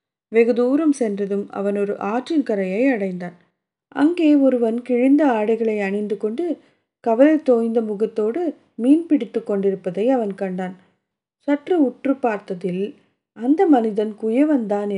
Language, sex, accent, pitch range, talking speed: Tamil, female, native, 200-265 Hz, 110 wpm